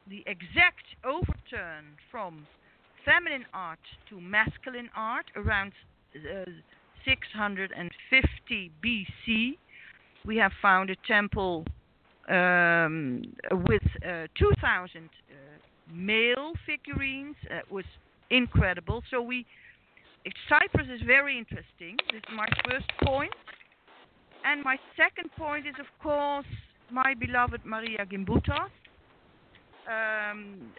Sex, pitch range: female, 195-270 Hz